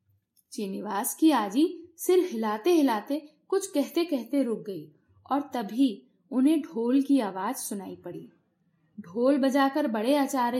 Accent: native